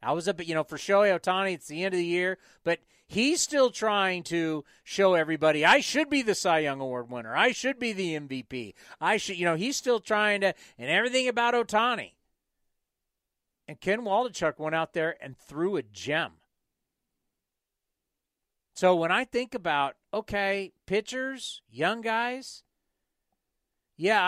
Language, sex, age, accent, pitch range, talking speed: English, male, 40-59, American, 150-200 Hz, 165 wpm